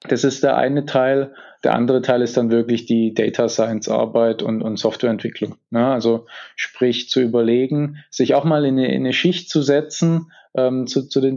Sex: male